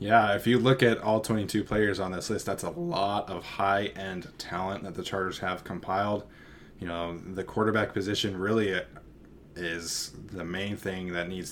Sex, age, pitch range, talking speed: male, 20-39, 95-110 Hz, 175 wpm